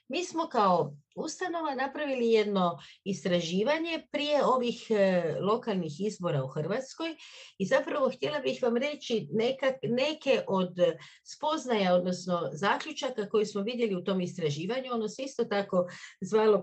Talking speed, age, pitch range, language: 135 wpm, 50-69, 185-265 Hz, Croatian